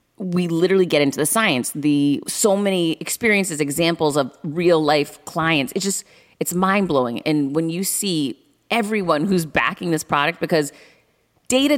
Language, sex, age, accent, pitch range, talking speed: English, female, 30-49, American, 135-185 Hz, 160 wpm